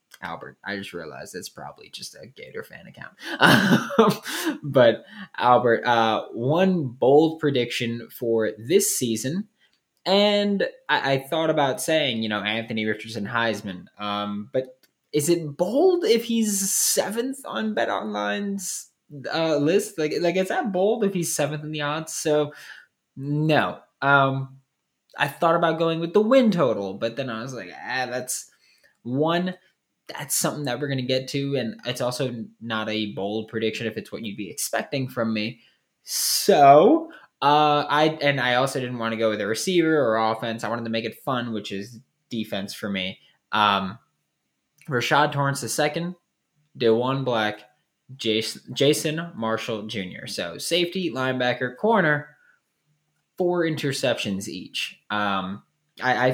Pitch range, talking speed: 115-165 Hz, 155 wpm